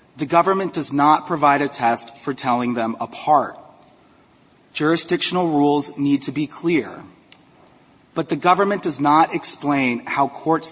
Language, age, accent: English, 30-49, American